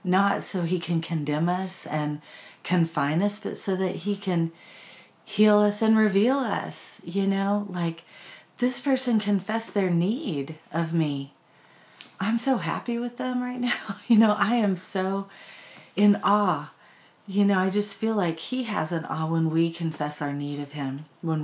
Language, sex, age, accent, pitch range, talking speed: English, female, 40-59, American, 155-195 Hz, 170 wpm